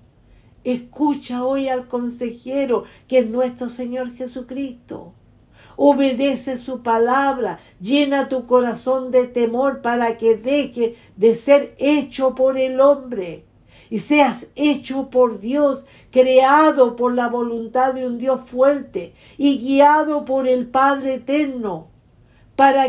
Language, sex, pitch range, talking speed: English, female, 230-275 Hz, 120 wpm